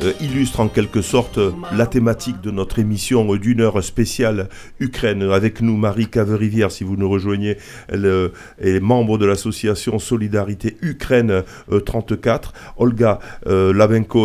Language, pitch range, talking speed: French, 105-120 Hz, 130 wpm